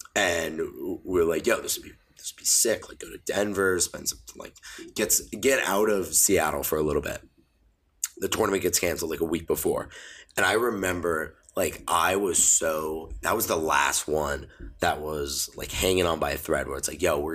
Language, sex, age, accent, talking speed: English, male, 20-39, American, 200 wpm